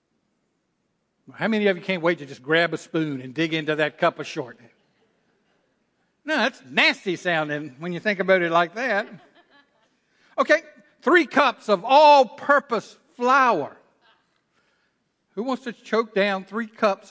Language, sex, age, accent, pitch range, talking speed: English, male, 50-69, American, 180-275 Hz, 145 wpm